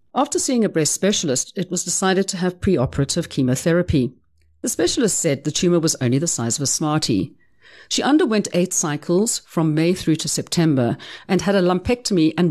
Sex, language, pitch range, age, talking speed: female, English, 140-200 Hz, 50-69, 180 wpm